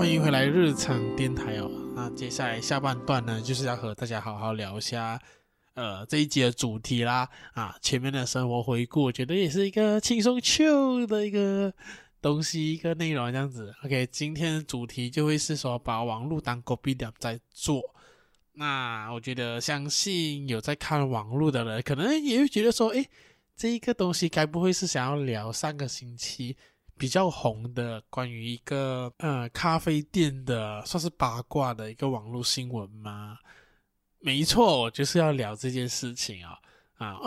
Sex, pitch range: male, 120-165 Hz